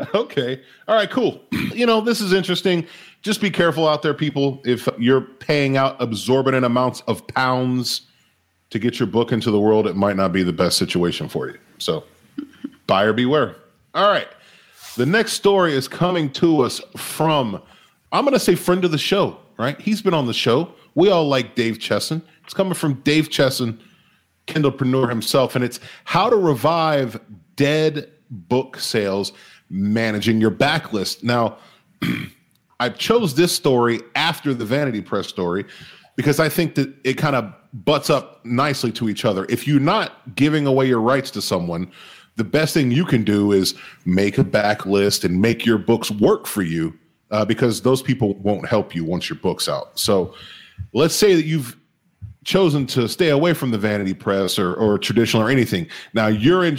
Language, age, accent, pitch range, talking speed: English, 40-59, American, 115-155 Hz, 180 wpm